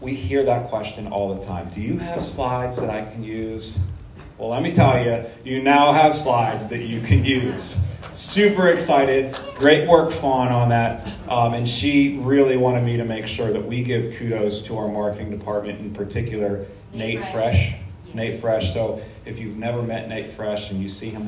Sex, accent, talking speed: male, American, 195 wpm